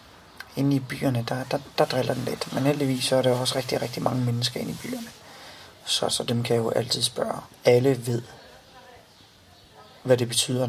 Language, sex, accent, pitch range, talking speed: Danish, male, native, 120-140 Hz, 190 wpm